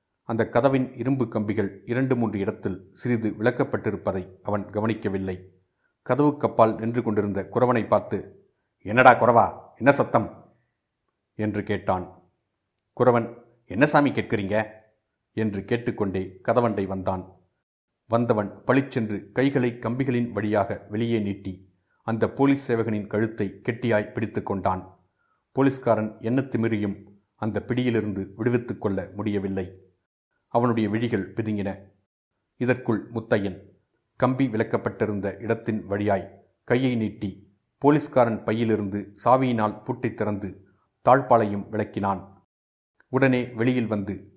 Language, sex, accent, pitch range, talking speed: Tamil, male, native, 100-120 Hz, 95 wpm